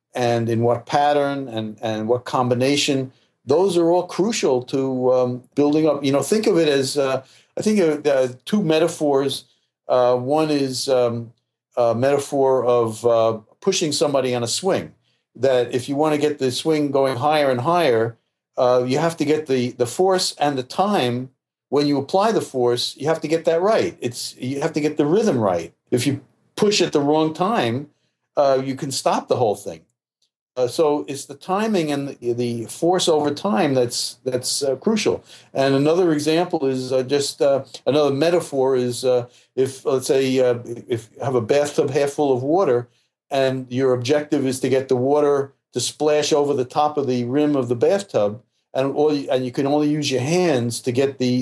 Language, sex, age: English, male, 50-69